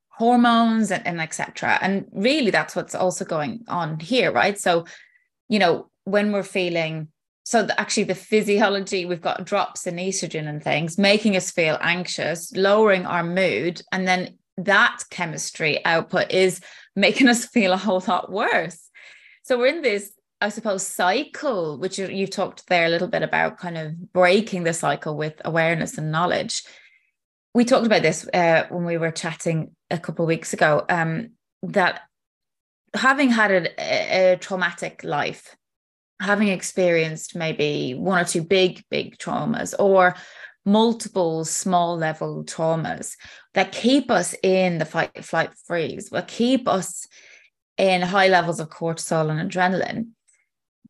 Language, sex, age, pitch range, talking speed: English, female, 20-39, 170-210 Hz, 155 wpm